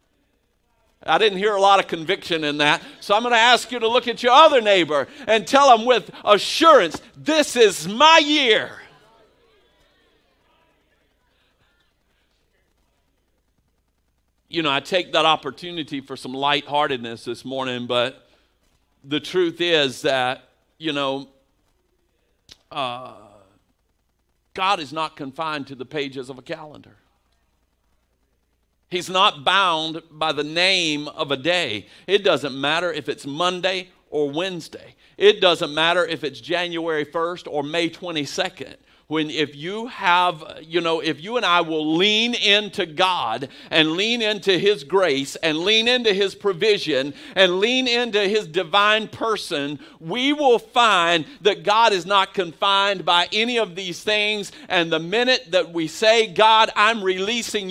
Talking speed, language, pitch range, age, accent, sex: 145 wpm, English, 155-210 Hz, 50-69, American, male